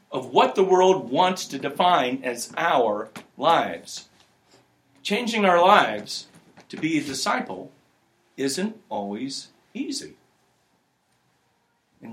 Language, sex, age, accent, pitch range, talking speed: English, male, 60-79, American, 145-220 Hz, 105 wpm